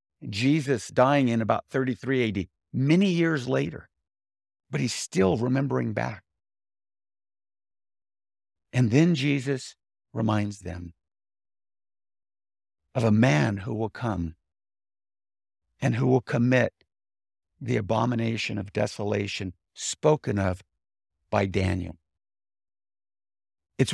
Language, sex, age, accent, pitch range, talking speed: English, male, 50-69, American, 100-140 Hz, 95 wpm